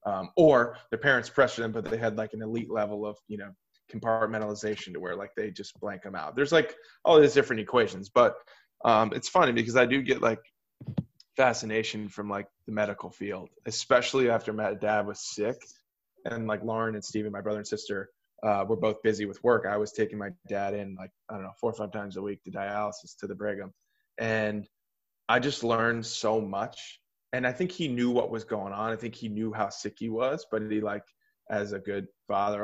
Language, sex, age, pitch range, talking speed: English, male, 20-39, 105-120 Hz, 215 wpm